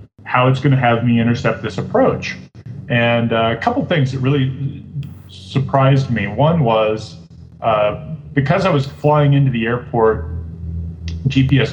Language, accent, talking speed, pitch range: English, American, 145 wpm, 115-140 Hz